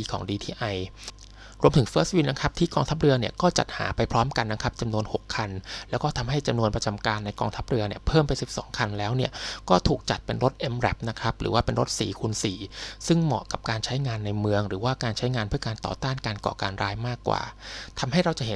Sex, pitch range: male, 105-130 Hz